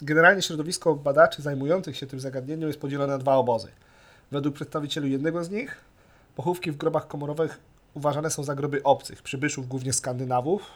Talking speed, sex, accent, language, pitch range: 160 wpm, male, native, Polish, 130-155 Hz